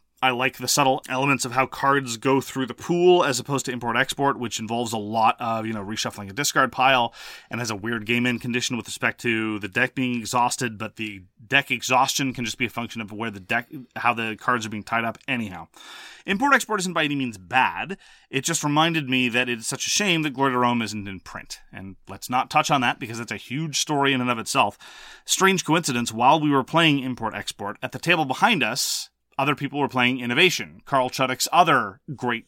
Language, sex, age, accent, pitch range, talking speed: English, male, 30-49, American, 110-140 Hz, 225 wpm